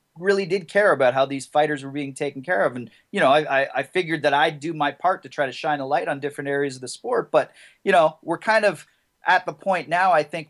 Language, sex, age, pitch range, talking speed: English, male, 30-49, 130-155 Hz, 275 wpm